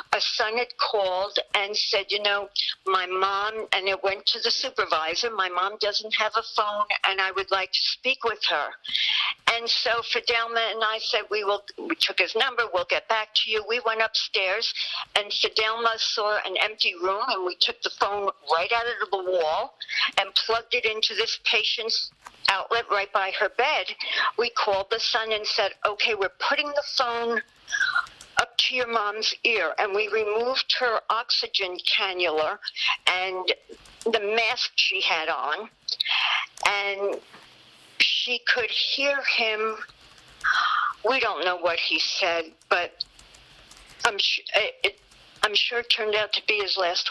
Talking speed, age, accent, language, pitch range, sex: 160 wpm, 60-79, American, English, 195-245 Hz, female